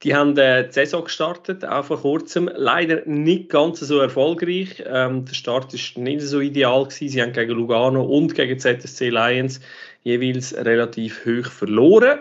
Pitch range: 120-145 Hz